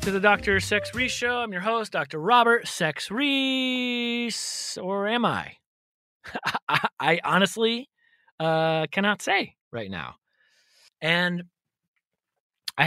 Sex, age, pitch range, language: male, 30-49, 150-220 Hz, English